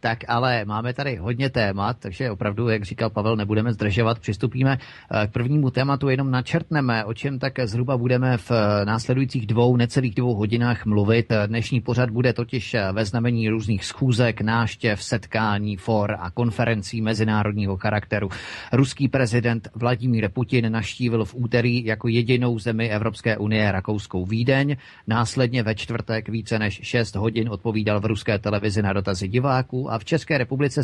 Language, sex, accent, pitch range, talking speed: Czech, male, native, 105-125 Hz, 150 wpm